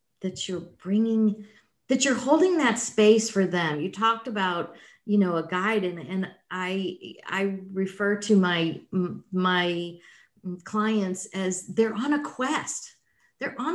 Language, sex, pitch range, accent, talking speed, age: English, female, 185-235 Hz, American, 145 wpm, 50-69